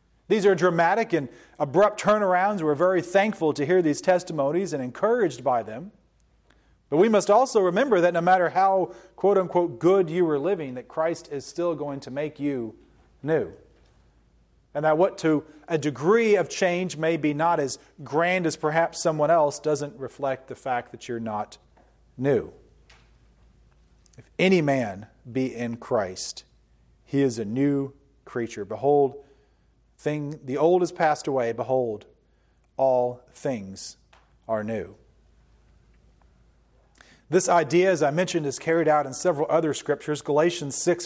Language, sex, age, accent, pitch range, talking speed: English, male, 40-59, American, 135-180 Hz, 150 wpm